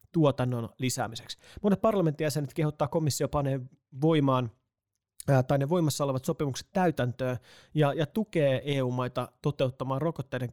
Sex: male